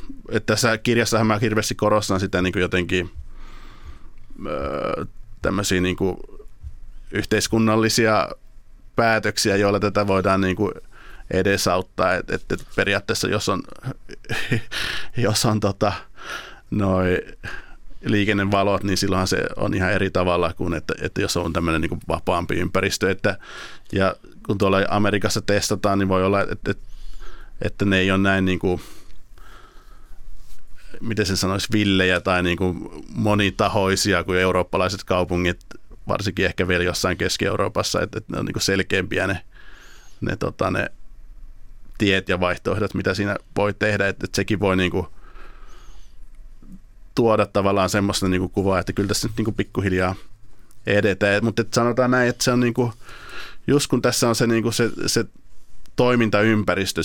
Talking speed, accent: 140 wpm, native